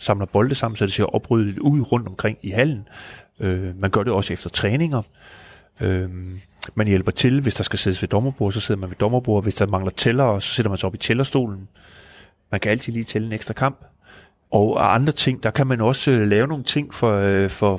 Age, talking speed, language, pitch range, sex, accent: 30-49, 225 wpm, Danish, 100-130 Hz, male, native